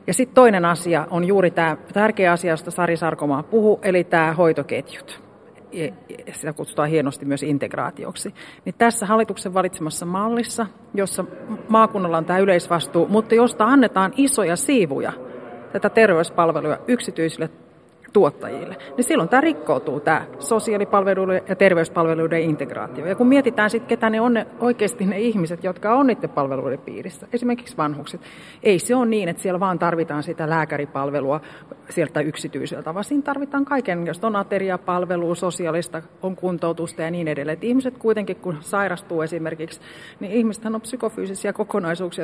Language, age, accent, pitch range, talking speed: Finnish, 40-59, native, 165-220 Hz, 140 wpm